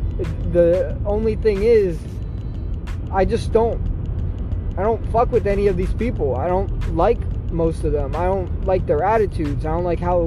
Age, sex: 20-39, male